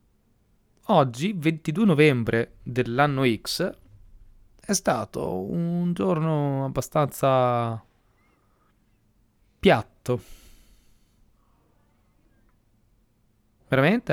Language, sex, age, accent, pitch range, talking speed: Italian, male, 30-49, native, 110-165 Hz, 50 wpm